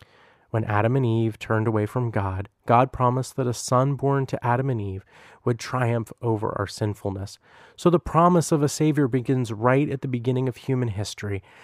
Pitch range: 110-140 Hz